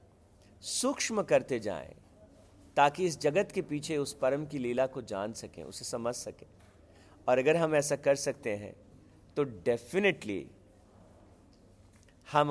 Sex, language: male, Hindi